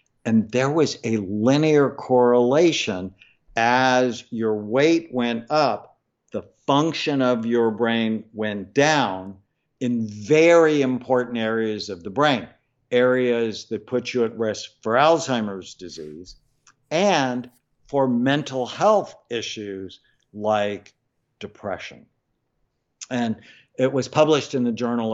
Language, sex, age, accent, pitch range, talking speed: English, male, 60-79, American, 105-125 Hz, 115 wpm